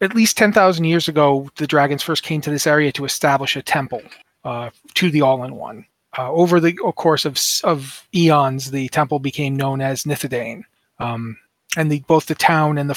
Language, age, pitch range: English, 30-49, 135-165 Hz